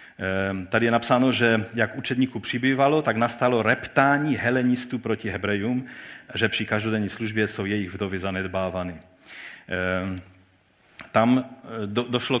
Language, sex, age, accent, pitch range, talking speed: Czech, male, 40-59, native, 115-160 Hz, 110 wpm